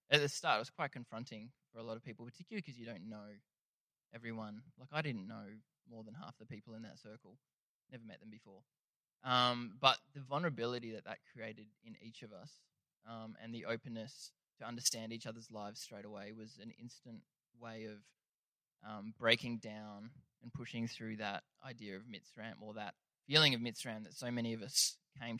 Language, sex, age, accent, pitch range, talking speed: English, male, 20-39, Australian, 110-130 Hz, 195 wpm